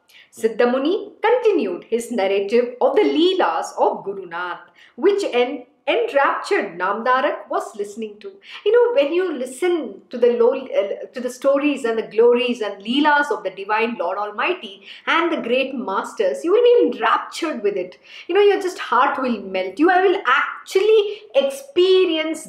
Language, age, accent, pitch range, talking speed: English, 50-69, Indian, 245-400 Hz, 160 wpm